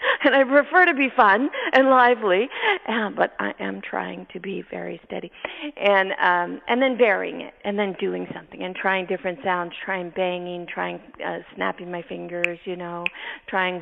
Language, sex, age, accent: English, female, 40-59, American